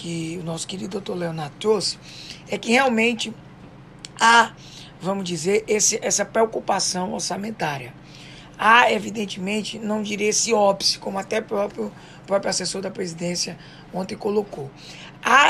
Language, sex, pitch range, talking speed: English, female, 175-250 Hz, 125 wpm